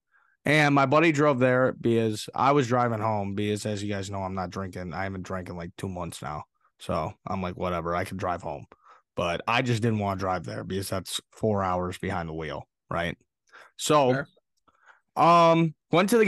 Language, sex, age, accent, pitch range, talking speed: English, male, 20-39, American, 105-165 Hz, 205 wpm